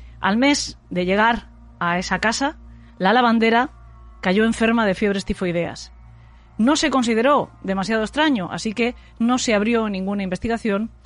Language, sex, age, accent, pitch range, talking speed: Spanish, female, 30-49, Spanish, 190-245 Hz, 140 wpm